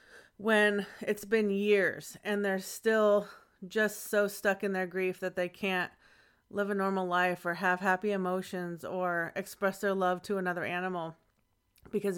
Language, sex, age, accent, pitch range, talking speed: English, female, 30-49, American, 185-210 Hz, 160 wpm